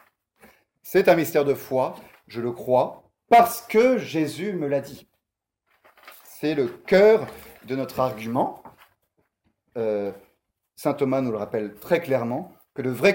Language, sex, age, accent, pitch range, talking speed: French, male, 30-49, French, 125-200 Hz, 140 wpm